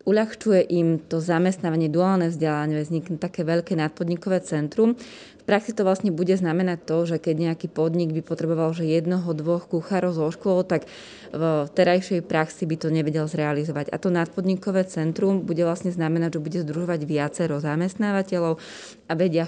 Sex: female